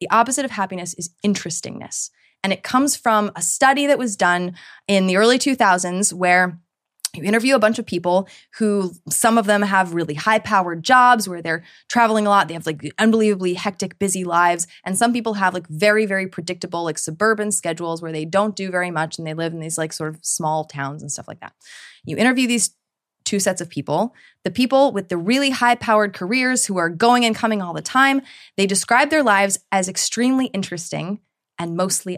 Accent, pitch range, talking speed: American, 175-230 Hz, 205 wpm